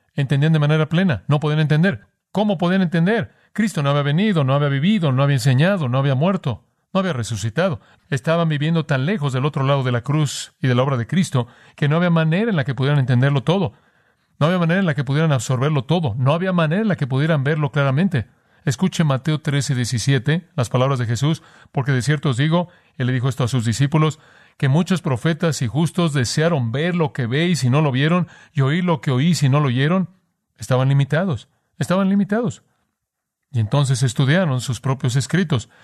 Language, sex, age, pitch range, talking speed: Spanish, male, 40-59, 125-155 Hz, 210 wpm